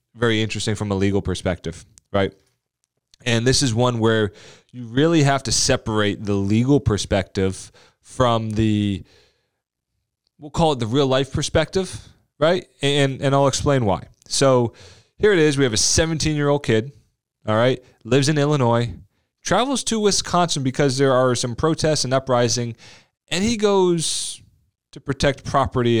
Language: English